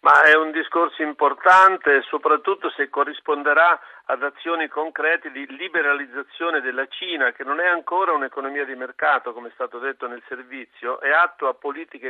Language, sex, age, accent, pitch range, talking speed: Italian, male, 50-69, native, 135-170 Hz, 160 wpm